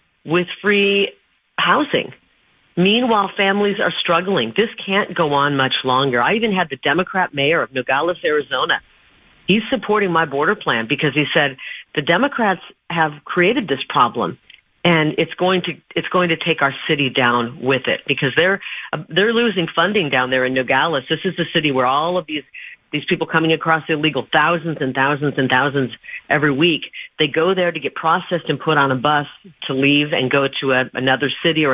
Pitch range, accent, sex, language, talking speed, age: 140-180 Hz, American, female, English, 190 wpm, 40-59